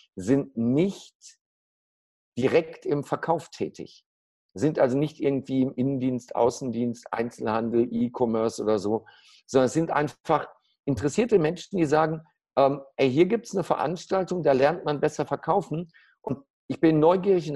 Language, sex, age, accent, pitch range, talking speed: German, male, 50-69, German, 120-155 Hz, 145 wpm